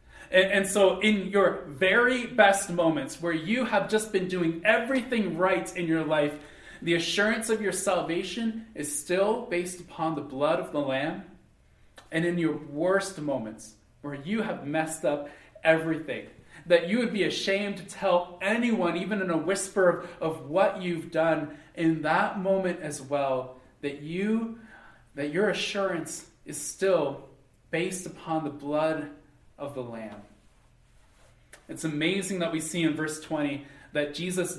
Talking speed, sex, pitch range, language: 160 wpm, male, 140-190 Hz, English